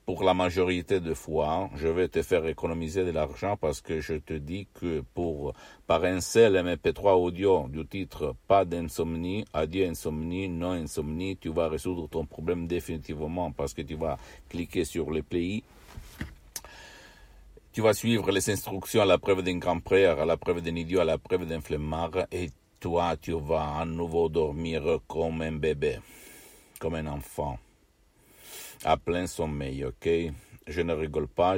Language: Italian